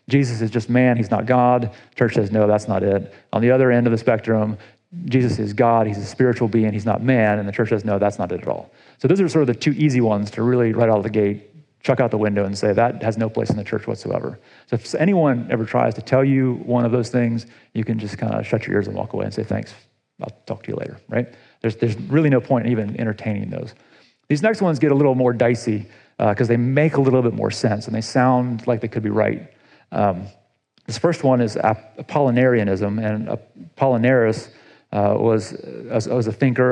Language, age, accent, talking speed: English, 30-49, American, 245 wpm